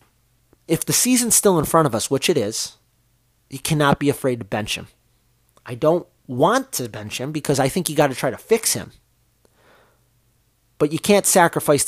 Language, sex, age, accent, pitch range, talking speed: English, male, 30-49, American, 120-150 Hz, 190 wpm